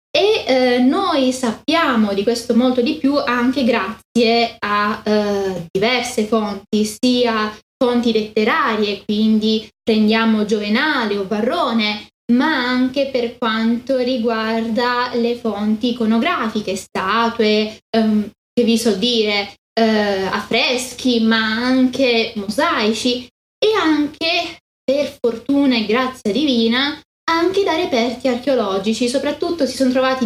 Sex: female